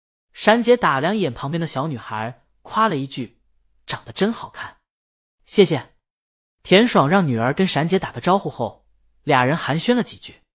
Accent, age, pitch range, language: native, 20-39, 125-195 Hz, Chinese